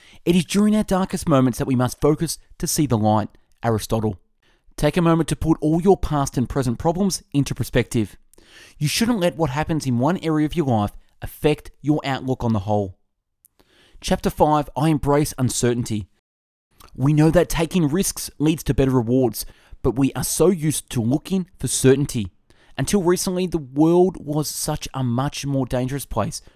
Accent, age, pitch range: Australian, 20-39, 115-165 Hz